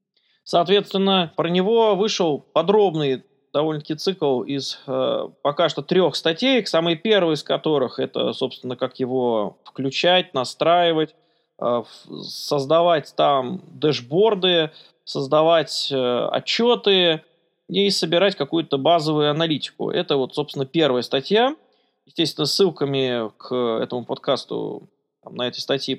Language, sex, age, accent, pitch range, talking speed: Russian, male, 20-39, native, 140-195 Hz, 115 wpm